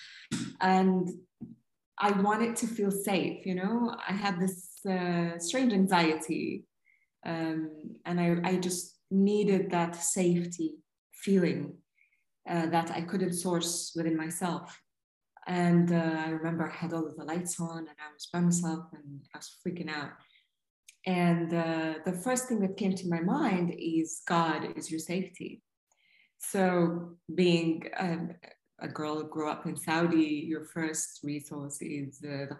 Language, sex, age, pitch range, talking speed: English, female, 20-39, 150-180 Hz, 150 wpm